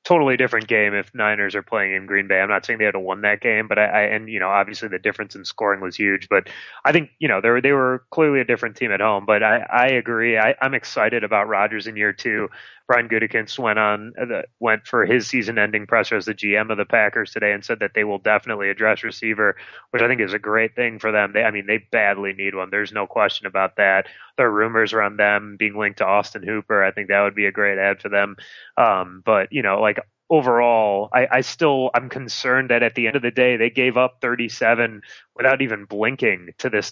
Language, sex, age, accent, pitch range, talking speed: English, male, 20-39, American, 100-115 Hz, 250 wpm